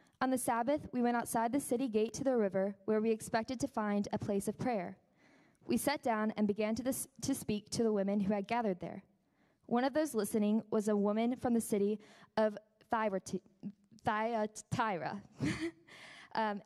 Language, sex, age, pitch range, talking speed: English, female, 20-39, 205-245 Hz, 180 wpm